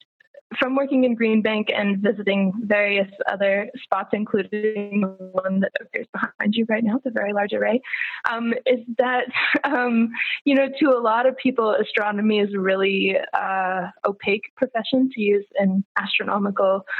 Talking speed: 160 wpm